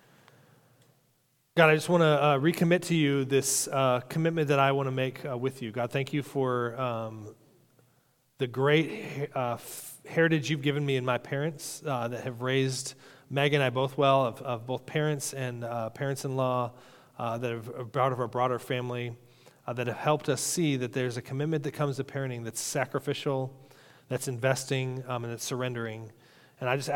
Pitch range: 125-145 Hz